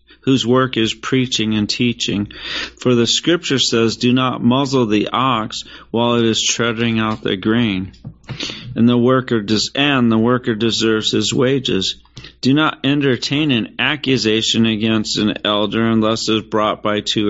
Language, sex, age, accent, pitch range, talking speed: English, male, 40-59, American, 110-125 Hz, 160 wpm